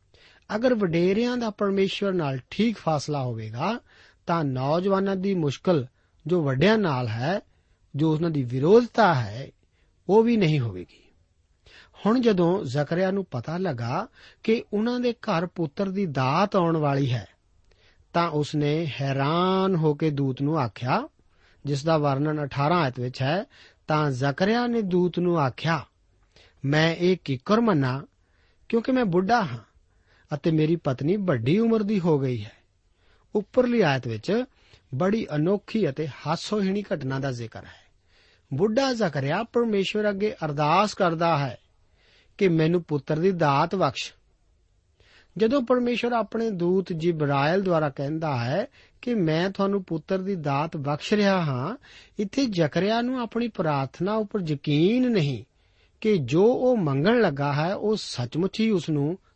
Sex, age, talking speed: male, 50-69, 95 wpm